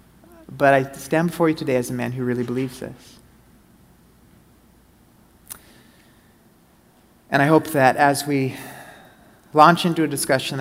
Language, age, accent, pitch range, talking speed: English, 30-49, American, 125-145 Hz, 130 wpm